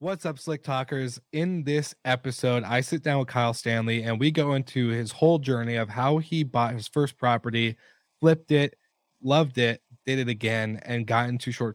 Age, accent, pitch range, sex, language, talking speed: 20-39, American, 115-135 Hz, male, English, 195 wpm